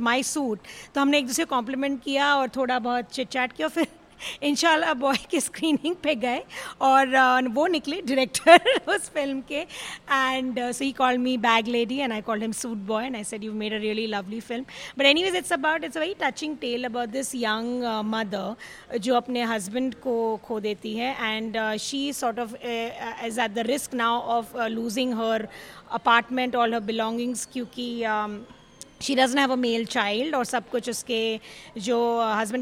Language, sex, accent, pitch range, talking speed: Hindi, female, native, 225-265 Hz, 180 wpm